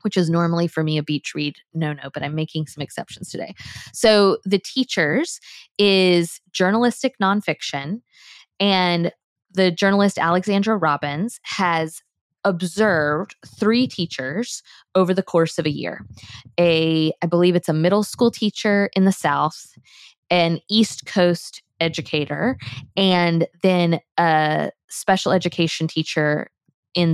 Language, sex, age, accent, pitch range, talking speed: English, female, 20-39, American, 160-195 Hz, 130 wpm